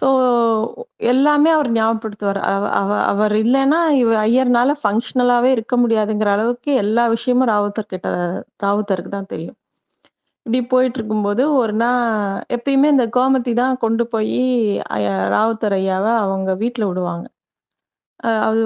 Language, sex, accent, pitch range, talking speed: Tamil, female, native, 215-255 Hz, 120 wpm